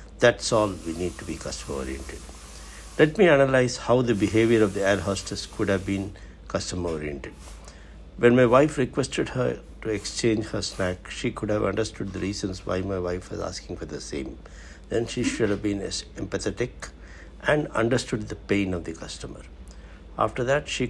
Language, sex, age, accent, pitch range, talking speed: English, male, 60-79, Indian, 85-110 Hz, 175 wpm